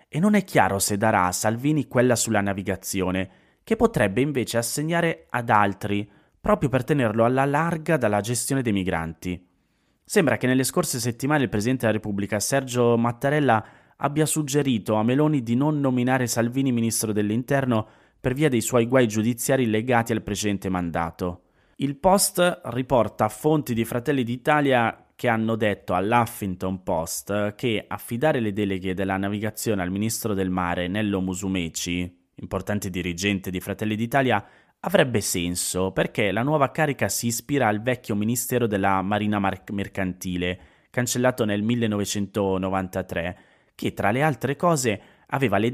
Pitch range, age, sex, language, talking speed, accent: 100-130 Hz, 30-49, male, Italian, 145 wpm, native